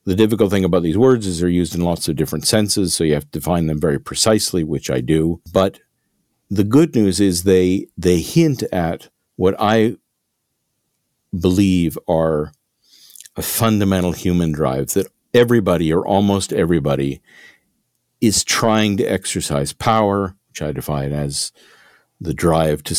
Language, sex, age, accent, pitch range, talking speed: English, male, 50-69, American, 80-100 Hz, 155 wpm